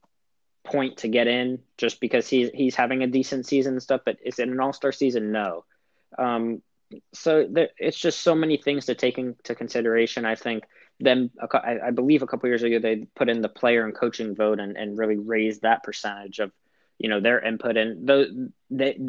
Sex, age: male, 20-39